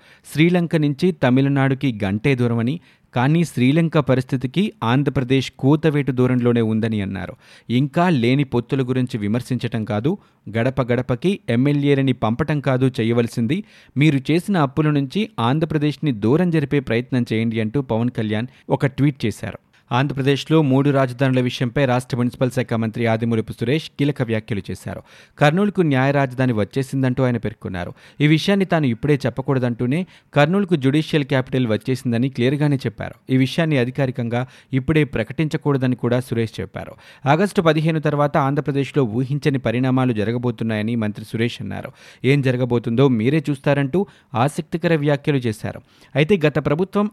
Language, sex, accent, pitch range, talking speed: Telugu, male, native, 120-150 Hz, 125 wpm